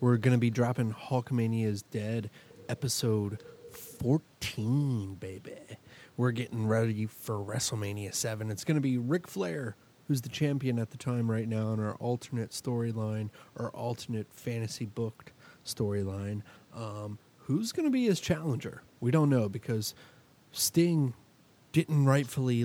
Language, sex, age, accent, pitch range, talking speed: English, male, 30-49, American, 110-130 Hz, 140 wpm